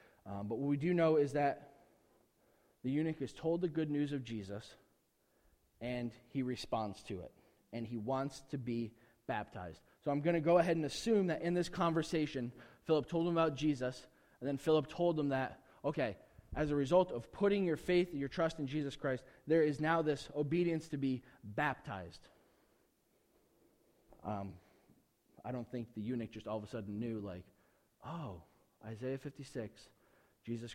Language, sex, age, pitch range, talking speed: English, male, 20-39, 120-165 Hz, 175 wpm